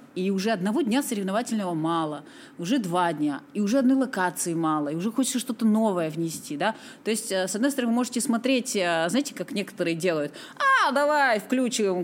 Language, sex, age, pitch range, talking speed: Russian, female, 30-49, 170-240 Hz, 175 wpm